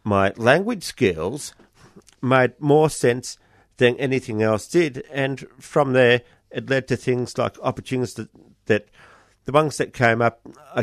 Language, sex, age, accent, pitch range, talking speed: English, male, 50-69, Australian, 110-135 Hz, 150 wpm